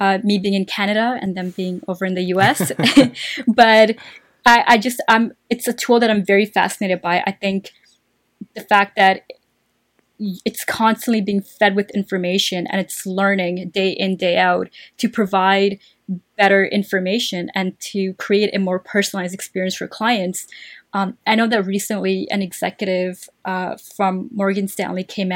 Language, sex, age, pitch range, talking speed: English, female, 20-39, 185-210 Hz, 155 wpm